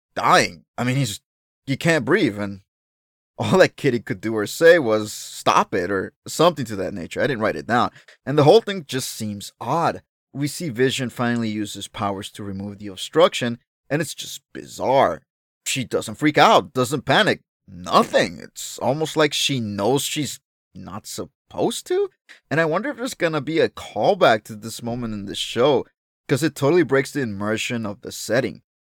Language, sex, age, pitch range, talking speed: English, male, 30-49, 105-145 Hz, 185 wpm